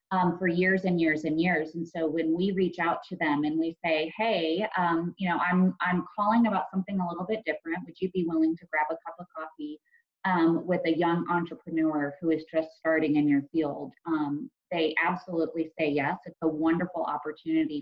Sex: female